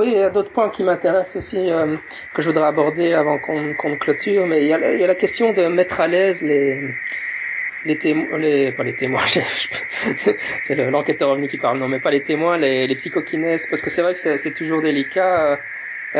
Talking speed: 245 wpm